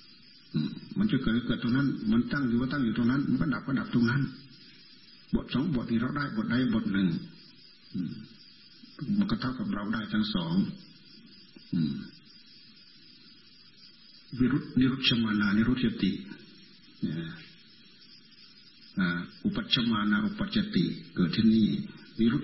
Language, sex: Thai, male